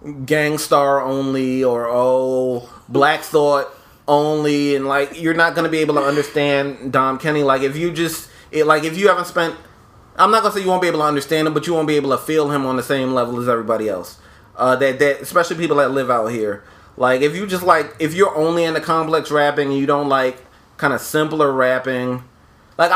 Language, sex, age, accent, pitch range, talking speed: English, male, 30-49, American, 130-155 Hz, 220 wpm